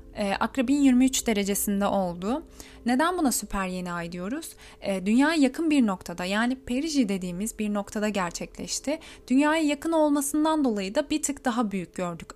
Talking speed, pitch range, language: 155 wpm, 205-280 Hz, Turkish